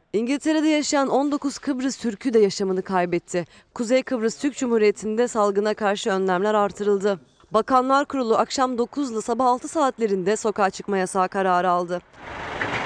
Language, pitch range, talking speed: Turkish, 190-250 Hz, 135 wpm